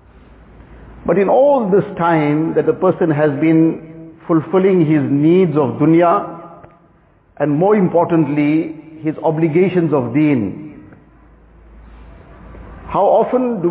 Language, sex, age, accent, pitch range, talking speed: English, male, 50-69, Indian, 150-180 Hz, 110 wpm